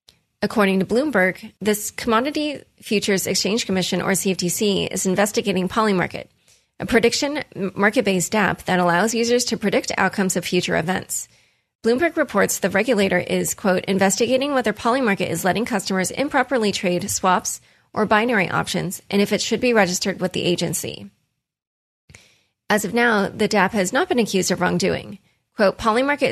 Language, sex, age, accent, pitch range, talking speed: English, female, 20-39, American, 185-230 Hz, 150 wpm